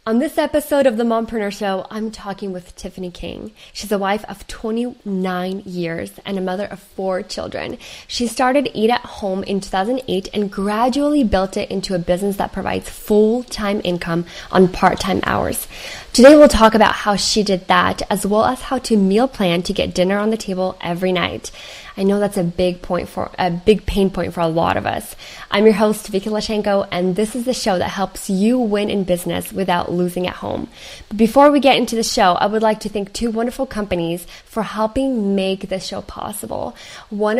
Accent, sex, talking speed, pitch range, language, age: American, female, 200 wpm, 185-220 Hz, English, 10-29